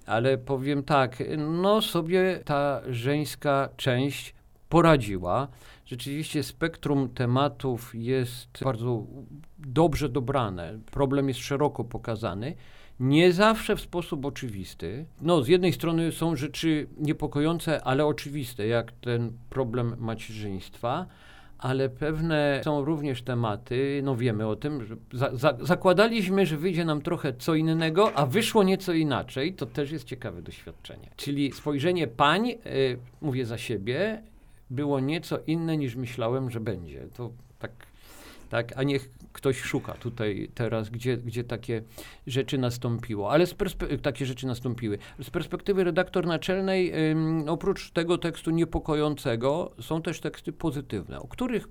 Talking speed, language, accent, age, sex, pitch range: 130 wpm, Polish, native, 50-69, male, 125-165 Hz